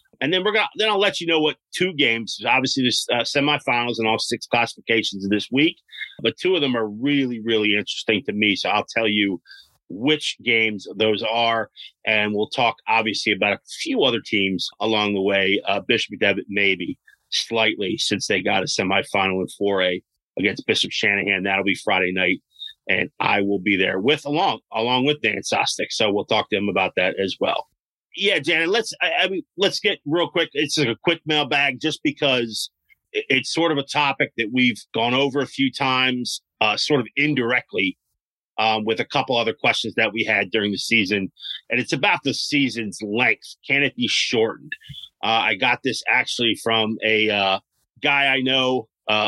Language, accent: English, American